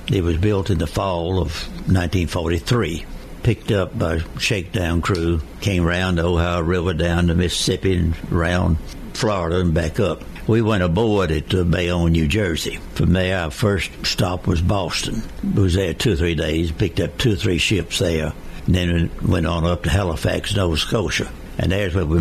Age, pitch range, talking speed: 60-79, 85-100 Hz, 190 wpm